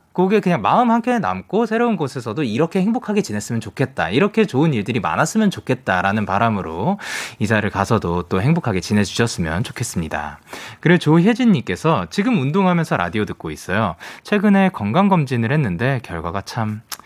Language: Korean